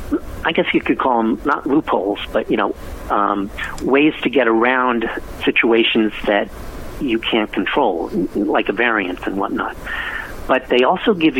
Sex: male